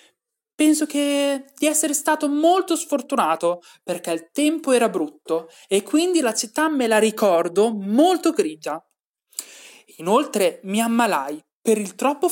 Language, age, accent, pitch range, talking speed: Italian, 30-49, native, 180-285 Hz, 125 wpm